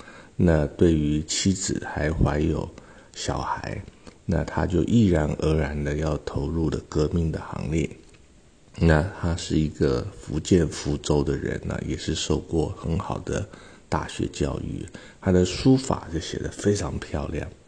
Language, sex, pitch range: Chinese, male, 75-90 Hz